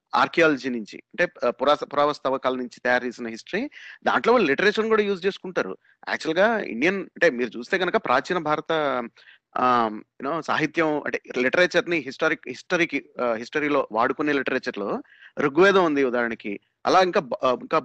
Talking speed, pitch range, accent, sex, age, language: 125 wpm, 130-190 Hz, native, male, 30-49, Telugu